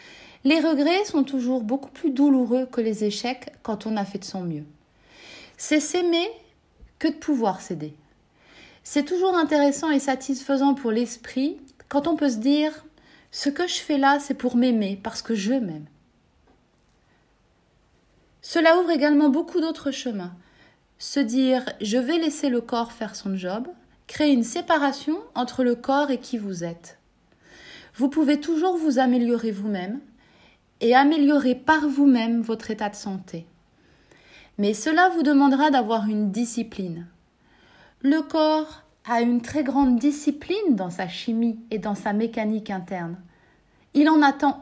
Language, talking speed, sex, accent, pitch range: French, 155 wpm, female, French, 225-295 Hz